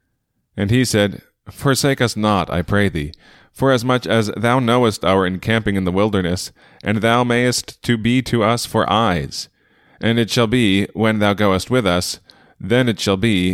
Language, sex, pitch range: English, male, 90-115 Hz